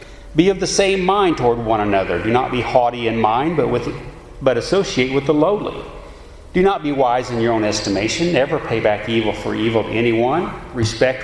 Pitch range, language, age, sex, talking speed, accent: 110-150 Hz, English, 40-59, male, 205 wpm, American